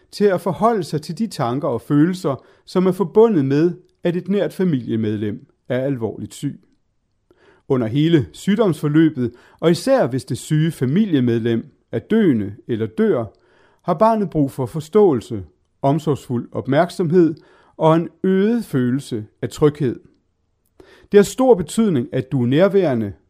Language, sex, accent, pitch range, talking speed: Danish, male, native, 125-190 Hz, 140 wpm